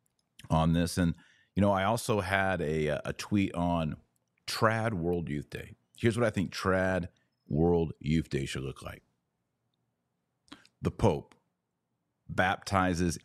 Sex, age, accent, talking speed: male, 40-59, American, 135 wpm